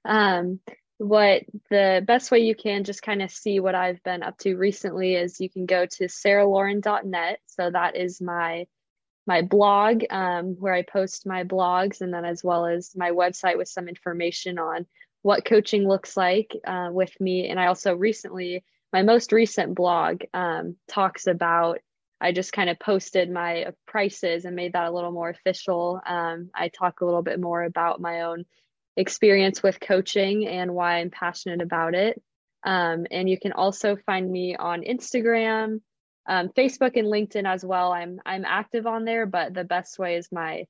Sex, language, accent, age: female, English, American, 20-39